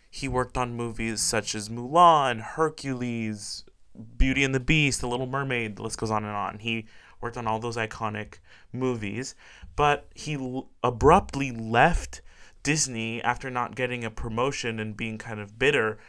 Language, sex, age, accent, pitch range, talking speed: English, male, 20-39, American, 115-145 Hz, 160 wpm